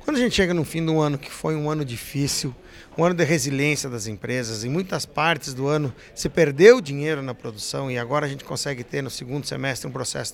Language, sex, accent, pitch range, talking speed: Portuguese, male, Brazilian, 130-170 Hz, 230 wpm